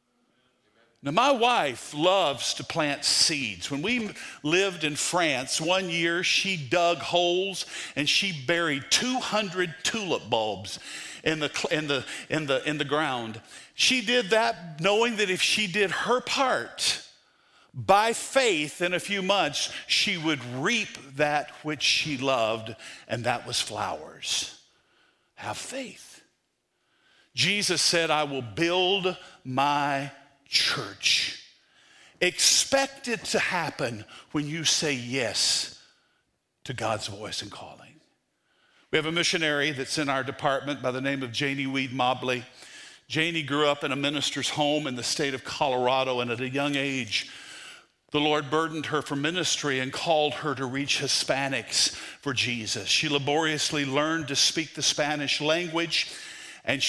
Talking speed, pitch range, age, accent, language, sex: 145 wpm, 135-180 Hz, 50-69, American, English, male